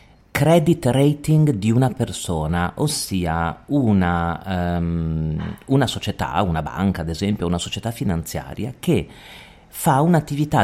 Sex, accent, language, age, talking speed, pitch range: male, native, Italian, 40-59, 115 wpm, 90-130 Hz